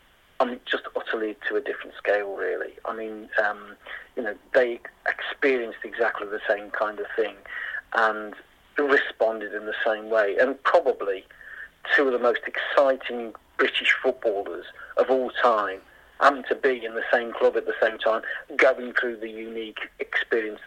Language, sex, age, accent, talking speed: English, male, 40-59, British, 155 wpm